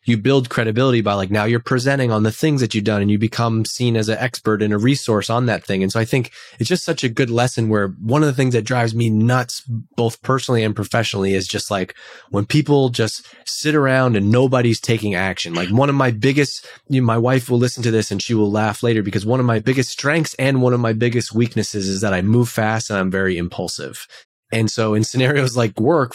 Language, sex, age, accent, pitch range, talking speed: English, male, 20-39, American, 105-125 Hz, 245 wpm